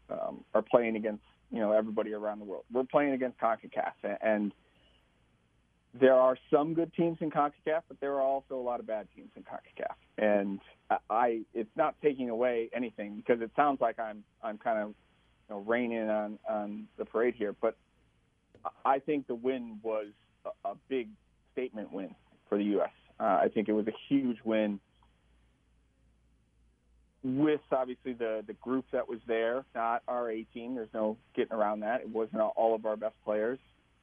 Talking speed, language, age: 180 wpm, English, 40-59